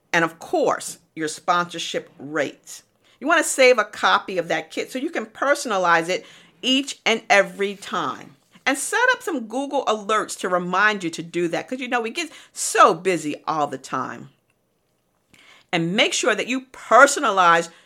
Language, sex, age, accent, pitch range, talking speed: English, female, 50-69, American, 165-240 Hz, 175 wpm